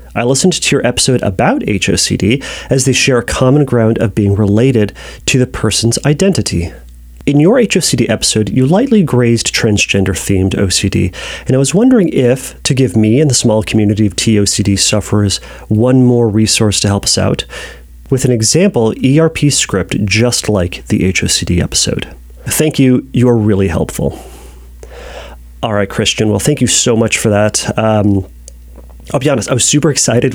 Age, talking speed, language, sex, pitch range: 30-49, 165 wpm, English, male, 105-140 Hz